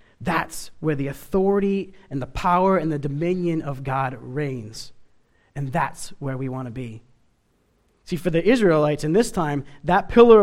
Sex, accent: male, American